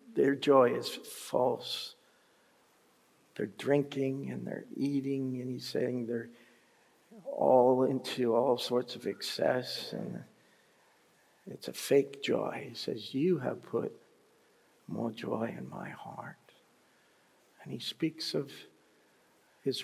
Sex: male